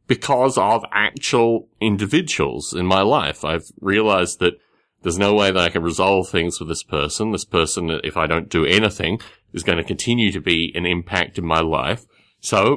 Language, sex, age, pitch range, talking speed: English, male, 30-49, 85-115 Hz, 190 wpm